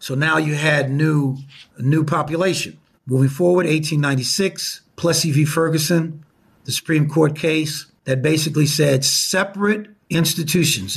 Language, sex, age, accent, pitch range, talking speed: English, male, 50-69, American, 125-160 Hz, 120 wpm